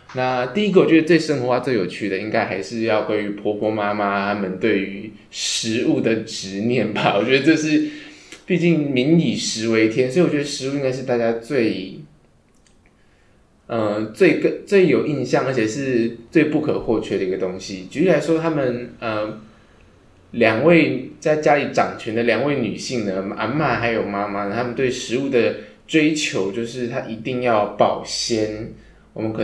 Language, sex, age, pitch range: Chinese, male, 20-39, 105-135 Hz